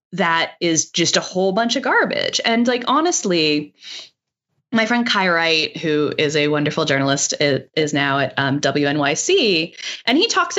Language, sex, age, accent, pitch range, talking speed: English, female, 20-39, American, 145-205 Hz, 165 wpm